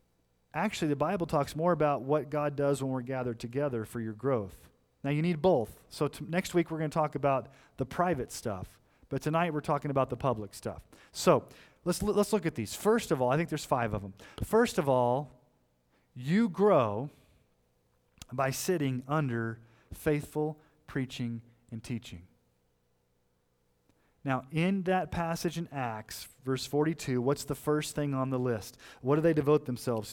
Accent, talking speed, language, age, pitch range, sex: American, 170 wpm, English, 40-59, 90-150 Hz, male